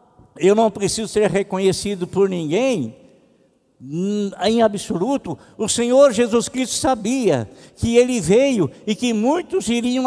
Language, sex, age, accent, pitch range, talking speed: Portuguese, male, 60-79, Brazilian, 225-275 Hz, 125 wpm